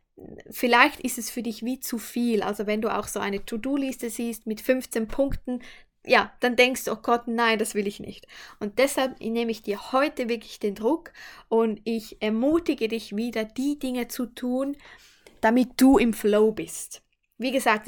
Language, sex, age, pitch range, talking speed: German, female, 20-39, 225-260 Hz, 185 wpm